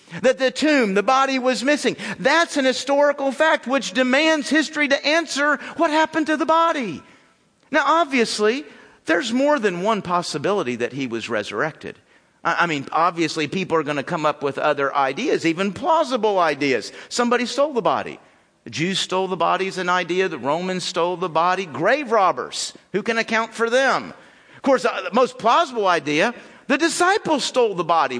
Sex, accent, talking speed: male, American, 175 wpm